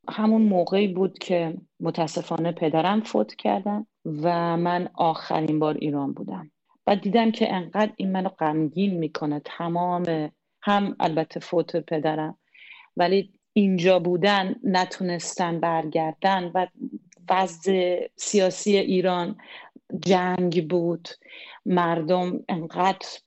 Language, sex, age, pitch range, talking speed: English, female, 40-59, 160-200 Hz, 105 wpm